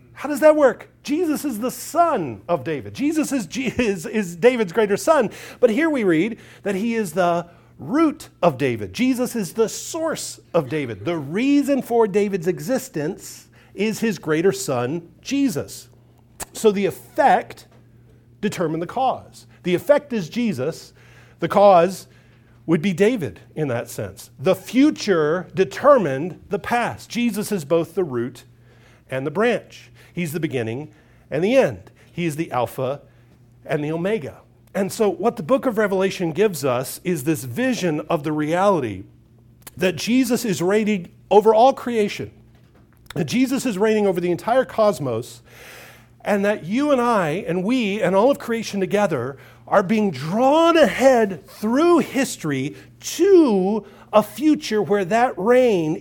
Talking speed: 150 wpm